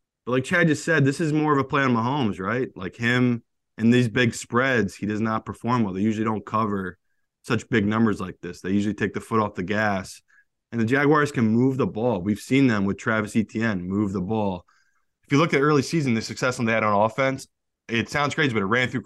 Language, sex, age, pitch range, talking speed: English, male, 20-39, 100-125 Hz, 240 wpm